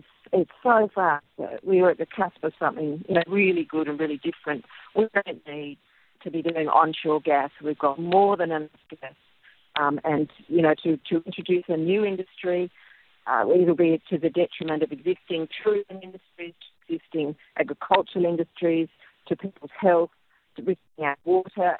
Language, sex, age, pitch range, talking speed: English, female, 50-69, 155-185 Hz, 170 wpm